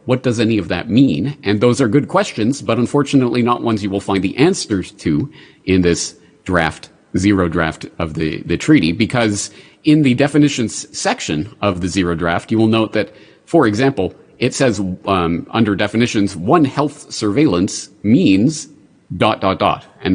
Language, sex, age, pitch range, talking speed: English, male, 40-59, 90-125 Hz, 175 wpm